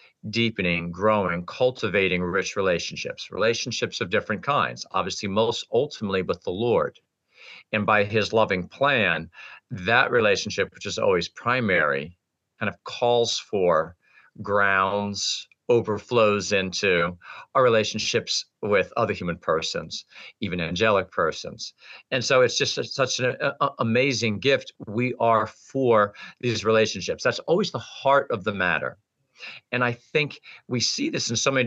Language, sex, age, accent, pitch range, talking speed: English, male, 50-69, American, 100-120 Hz, 135 wpm